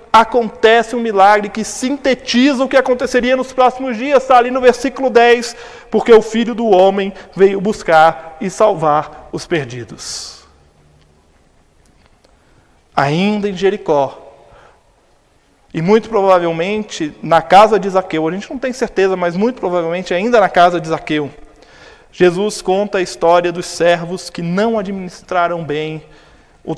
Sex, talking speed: male, 135 wpm